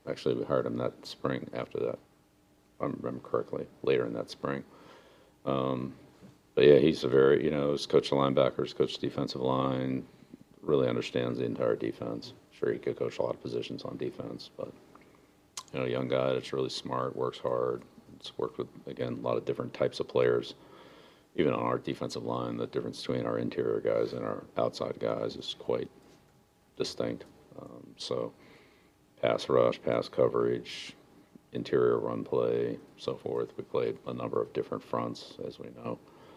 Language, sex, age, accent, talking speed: English, male, 50-69, American, 170 wpm